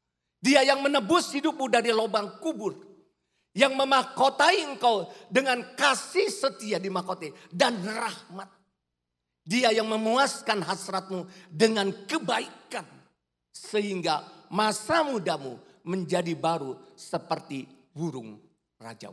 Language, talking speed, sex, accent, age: Indonesian, 95 wpm, male, native, 40-59